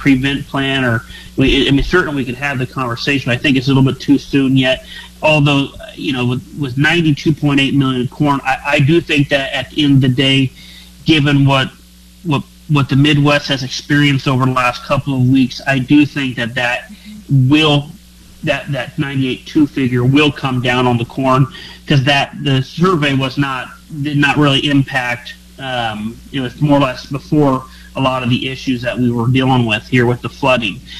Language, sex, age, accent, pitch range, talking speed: English, male, 30-49, American, 130-150 Hz, 195 wpm